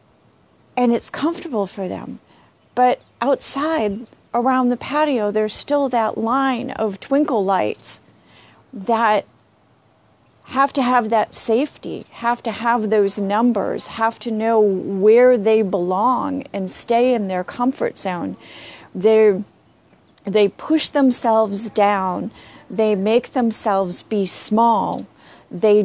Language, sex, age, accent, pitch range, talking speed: English, female, 40-59, American, 195-245 Hz, 120 wpm